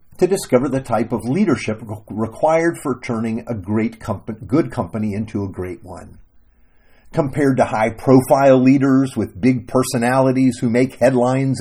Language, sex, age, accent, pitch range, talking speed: English, male, 50-69, American, 100-150 Hz, 145 wpm